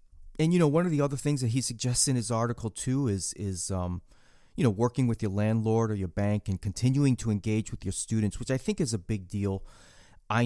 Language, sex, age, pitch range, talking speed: English, male, 30-49, 100-125 Hz, 240 wpm